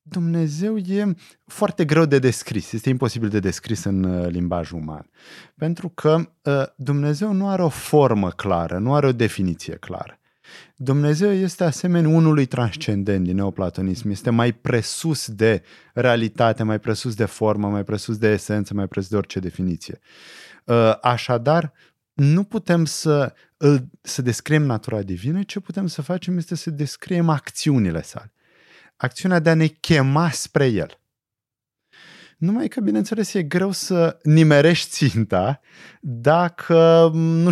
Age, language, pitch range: 20-39, Romanian, 110-165 Hz